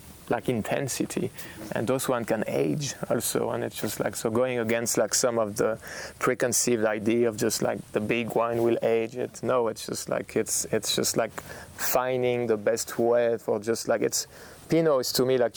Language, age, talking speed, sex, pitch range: English, 20-39, 195 wpm, male, 110-125 Hz